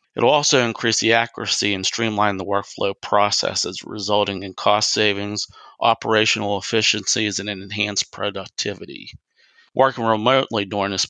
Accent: American